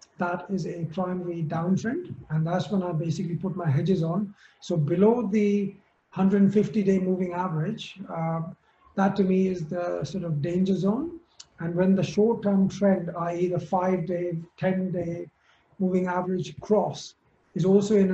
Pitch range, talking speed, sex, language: 165-185 Hz, 150 wpm, male, English